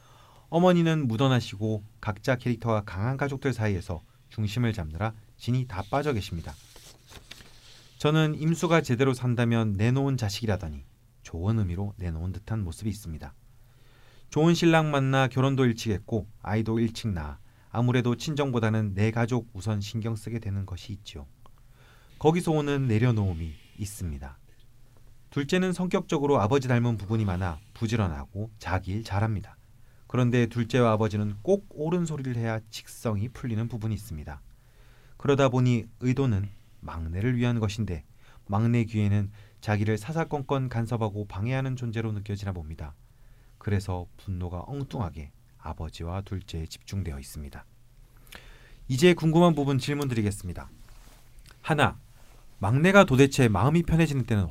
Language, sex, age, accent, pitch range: Korean, male, 40-59, native, 100-125 Hz